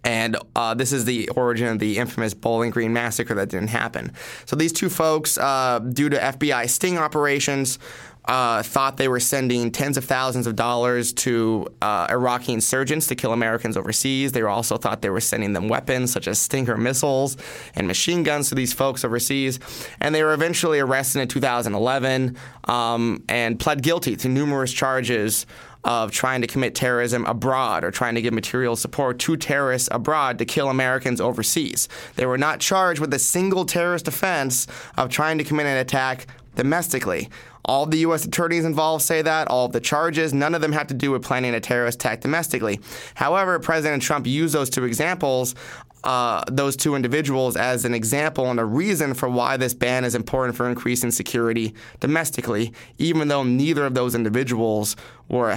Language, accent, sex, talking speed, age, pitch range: English, American, male, 180 wpm, 20-39, 120-140 Hz